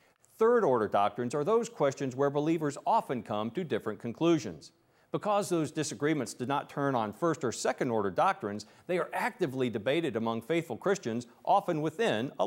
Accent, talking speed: American, 170 wpm